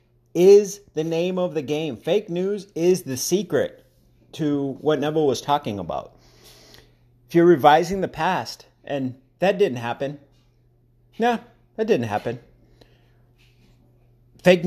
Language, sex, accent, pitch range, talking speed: English, male, American, 120-170 Hz, 125 wpm